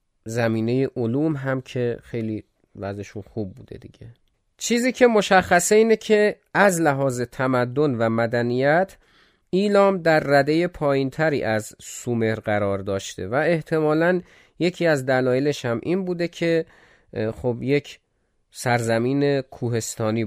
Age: 30-49